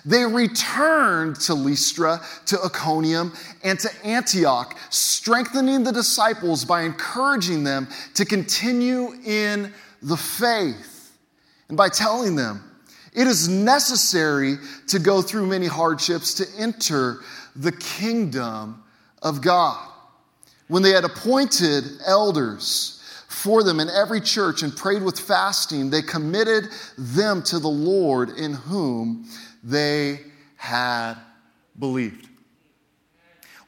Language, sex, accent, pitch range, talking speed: English, male, American, 165-245 Hz, 115 wpm